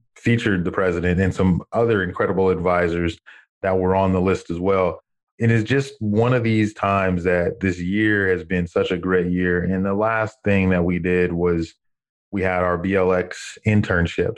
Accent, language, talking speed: American, English, 185 wpm